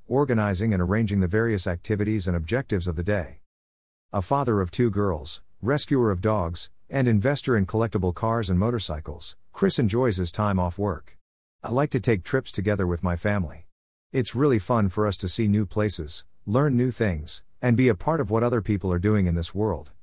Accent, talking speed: American, 200 wpm